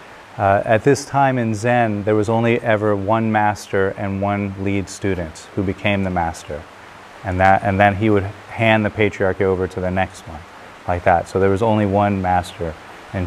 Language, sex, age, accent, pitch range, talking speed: English, male, 30-49, American, 95-115 Hz, 195 wpm